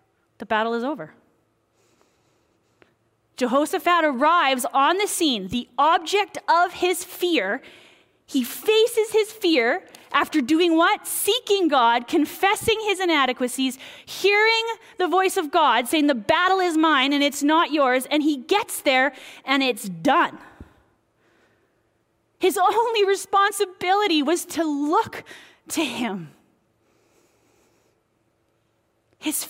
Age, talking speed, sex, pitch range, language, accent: 30-49, 115 wpm, female, 260-370 Hz, English, American